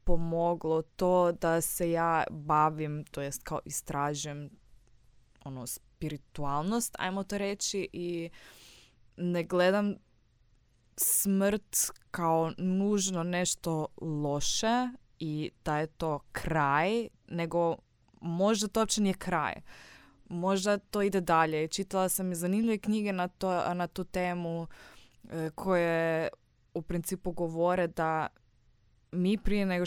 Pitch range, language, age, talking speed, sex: 160-190 Hz, Croatian, 20-39, 115 wpm, female